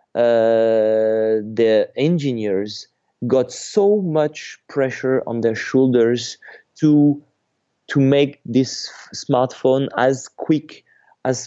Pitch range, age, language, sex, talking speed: 110-135 Hz, 30-49, German, male, 100 wpm